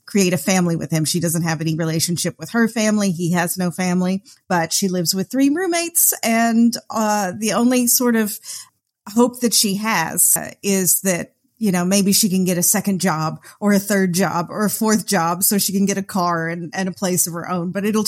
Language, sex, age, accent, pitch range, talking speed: English, female, 40-59, American, 170-220 Hz, 225 wpm